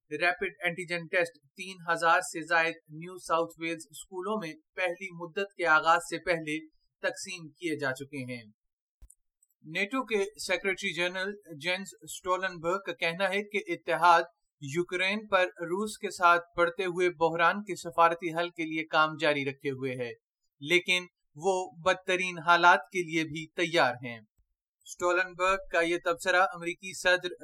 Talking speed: 135 wpm